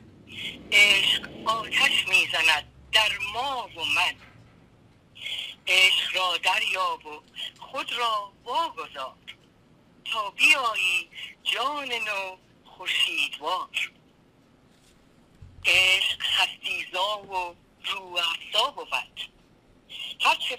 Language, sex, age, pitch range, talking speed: Persian, female, 50-69, 180-225 Hz, 75 wpm